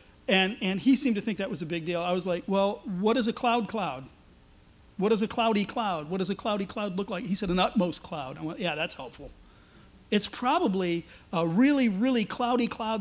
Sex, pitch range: male, 180-235 Hz